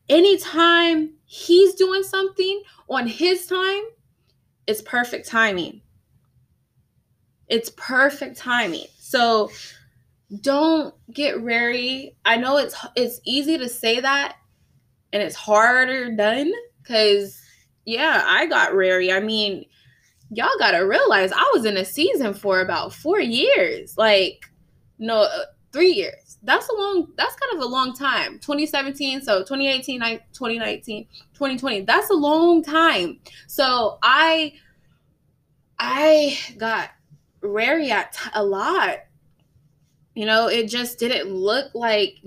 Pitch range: 225-325 Hz